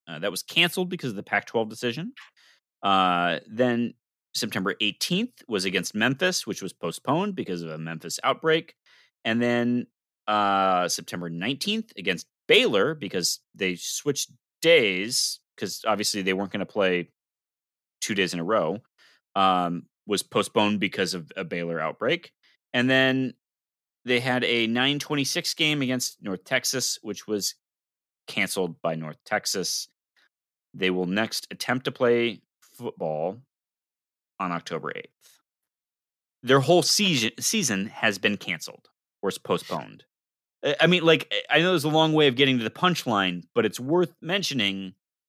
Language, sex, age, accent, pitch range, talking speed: English, male, 30-49, American, 95-155 Hz, 145 wpm